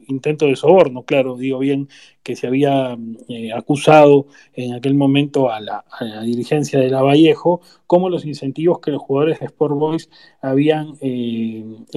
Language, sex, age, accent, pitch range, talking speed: Spanish, male, 30-49, Argentinian, 130-165 Hz, 160 wpm